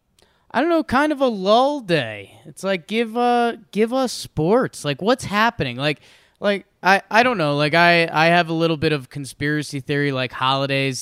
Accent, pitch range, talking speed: American, 130-200 Hz, 200 wpm